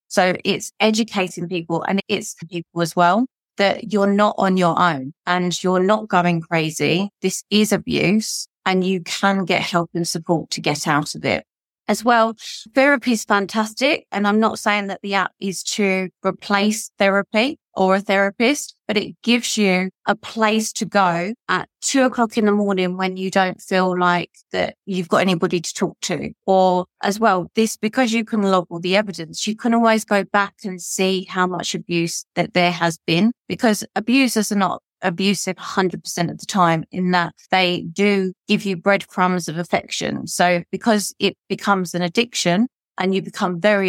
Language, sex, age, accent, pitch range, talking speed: English, female, 30-49, British, 180-210 Hz, 180 wpm